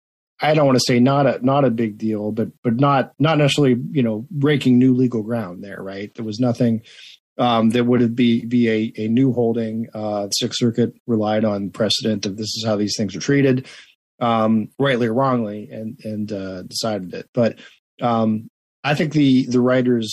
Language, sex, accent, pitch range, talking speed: English, male, American, 110-130 Hz, 200 wpm